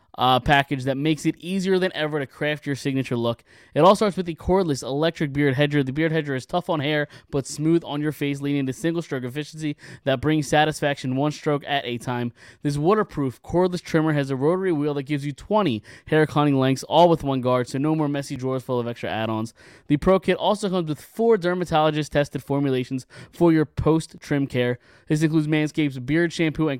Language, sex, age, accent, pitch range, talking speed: English, male, 20-39, American, 140-170 Hz, 215 wpm